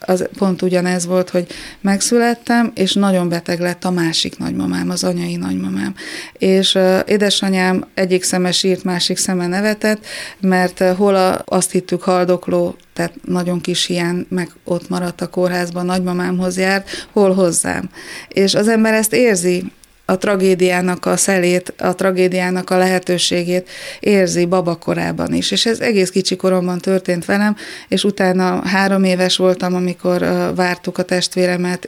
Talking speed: 145 wpm